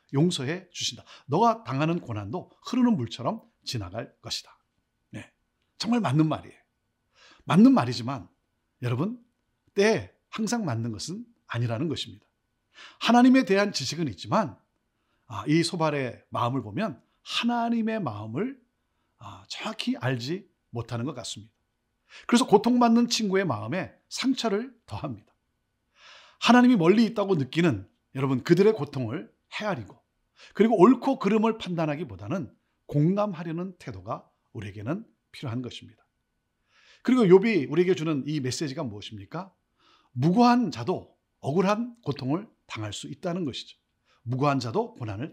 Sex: male